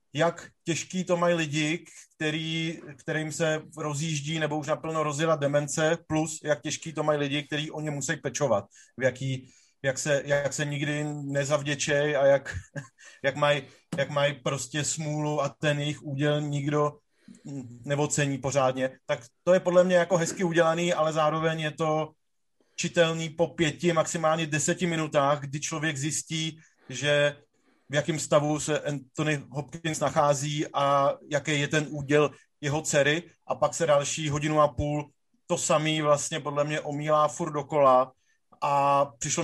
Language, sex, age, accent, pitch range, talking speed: Czech, male, 30-49, native, 145-160 Hz, 155 wpm